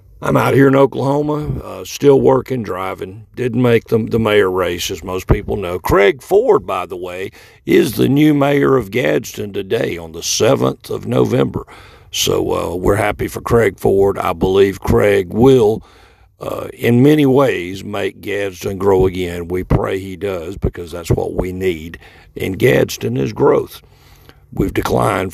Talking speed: 165 wpm